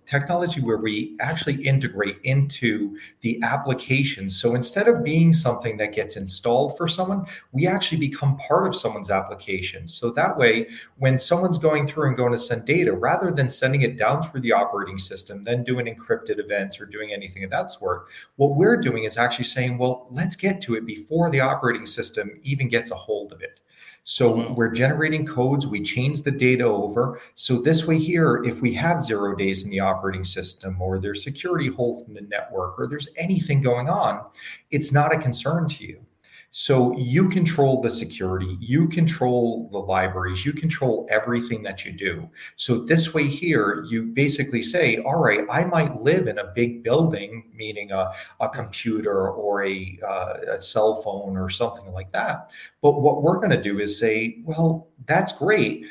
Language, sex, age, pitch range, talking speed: English, male, 40-59, 105-145 Hz, 185 wpm